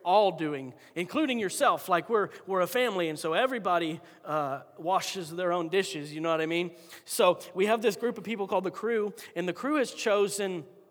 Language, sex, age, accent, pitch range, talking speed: English, male, 40-59, American, 165-215 Hz, 205 wpm